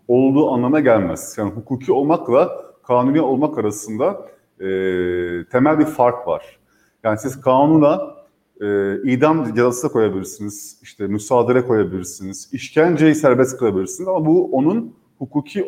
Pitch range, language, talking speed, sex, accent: 105-155 Hz, German, 125 wpm, male, Turkish